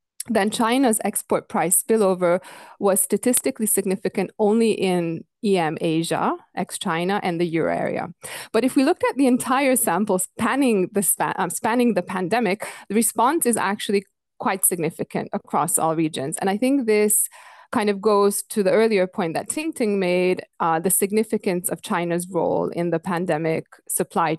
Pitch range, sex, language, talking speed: 175-225 Hz, female, English, 160 wpm